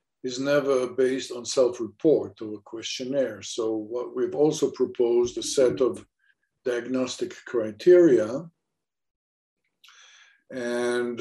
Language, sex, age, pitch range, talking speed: English, male, 50-69, 110-150 Hz, 95 wpm